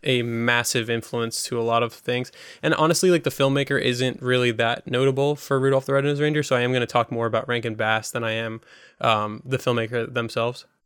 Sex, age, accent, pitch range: male, 20-39, American, 115-130 Hz